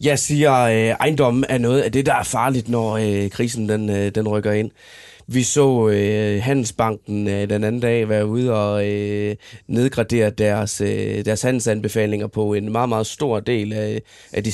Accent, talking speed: native, 155 wpm